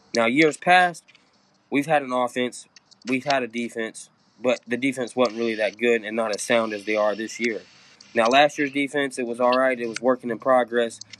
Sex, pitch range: male, 115-130 Hz